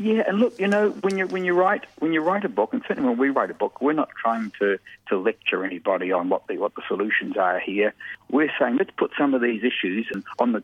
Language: English